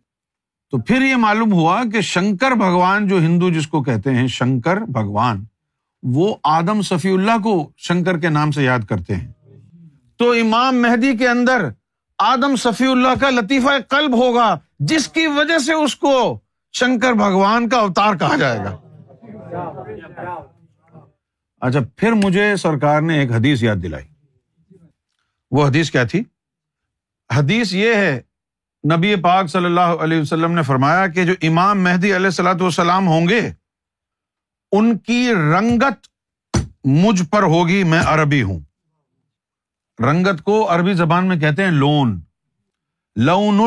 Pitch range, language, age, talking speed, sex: 140-220 Hz, Urdu, 50-69, 145 wpm, male